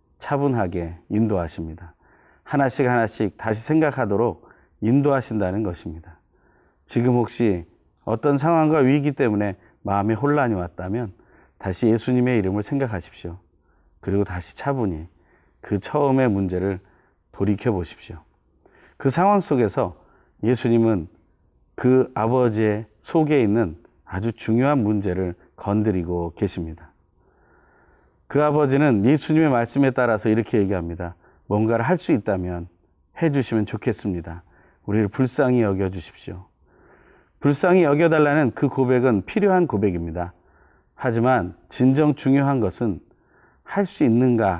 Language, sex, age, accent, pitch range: Korean, male, 30-49, native, 90-130 Hz